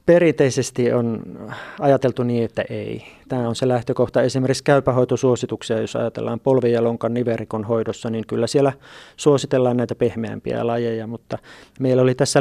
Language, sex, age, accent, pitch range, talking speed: Finnish, male, 30-49, native, 115-130 Hz, 135 wpm